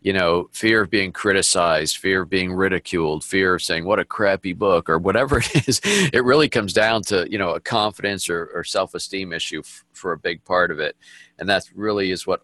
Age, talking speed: 50-69, 220 wpm